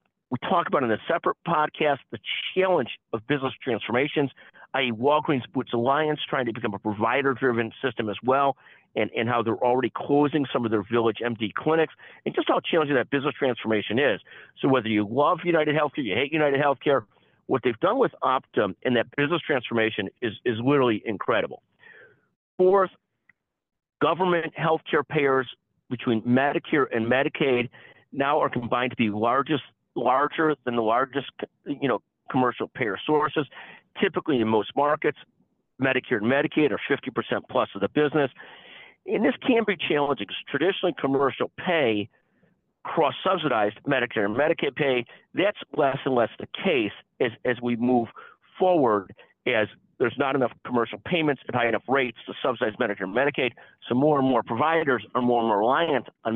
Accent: American